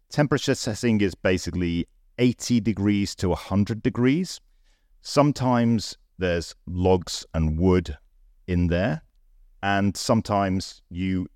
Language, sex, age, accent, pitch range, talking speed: English, male, 40-59, British, 85-110 Hz, 100 wpm